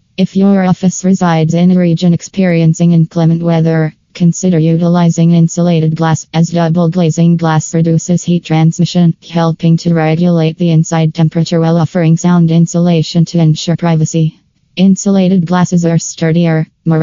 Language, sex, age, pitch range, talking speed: English, female, 20-39, 160-175 Hz, 135 wpm